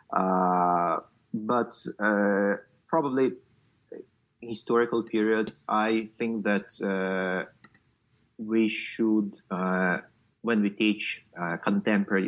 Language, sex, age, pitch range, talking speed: English, male, 30-49, 90-110 Hz, 90 wpm